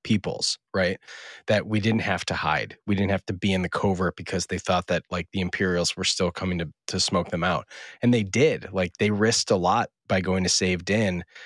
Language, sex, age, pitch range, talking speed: English, male, 20-39, 90-105 Hz, 230 wpm